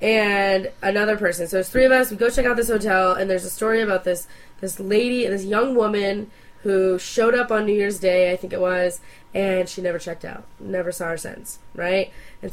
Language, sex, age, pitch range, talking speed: English, female, 20-39, 180-220 Hz, 225 wpm